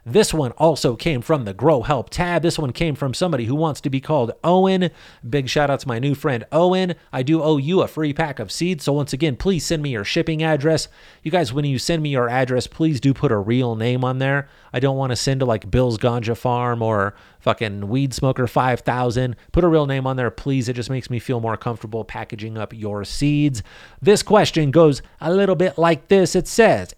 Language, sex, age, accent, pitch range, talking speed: English, male, 30-49, American, 125-160 Hz, 235 wpm